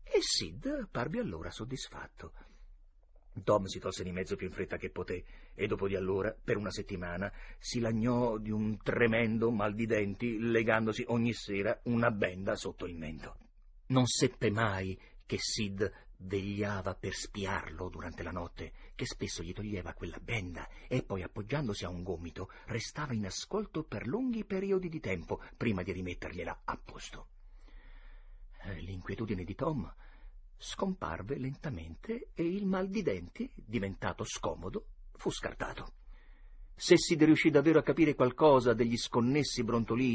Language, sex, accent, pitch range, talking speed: Italian, male, native, 95-135 Hz, 145 wpm